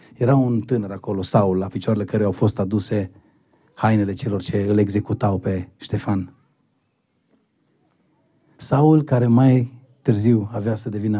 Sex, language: male, Romanian